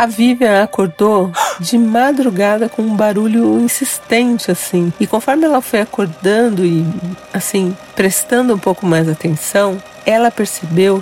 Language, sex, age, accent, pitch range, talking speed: Portuguese, female, 40-59, Brazilian, 175-235 Hz, 130 wpm